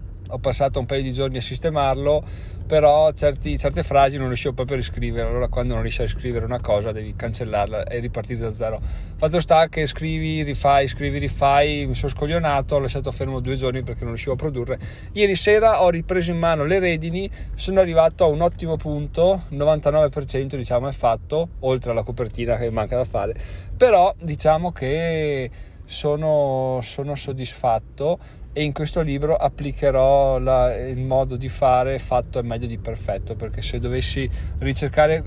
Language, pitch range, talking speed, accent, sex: Italian, 115-145 Hz, 170 wpm, native, male